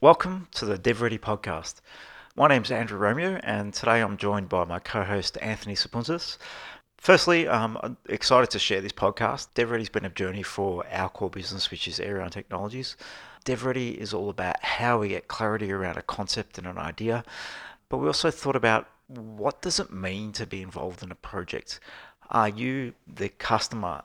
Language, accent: English, Australian